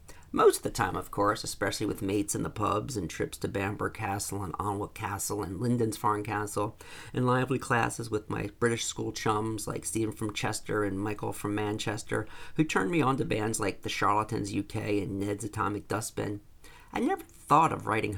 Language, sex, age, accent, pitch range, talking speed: English, male, 40-59, American, 100-130 Hz, 195 wpm